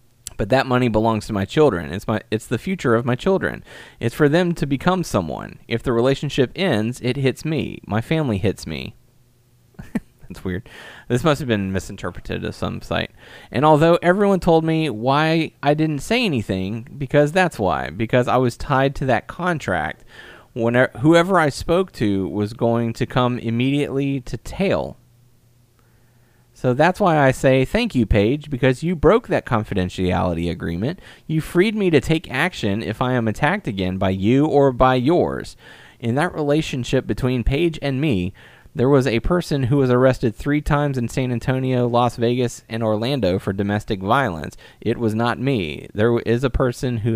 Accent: American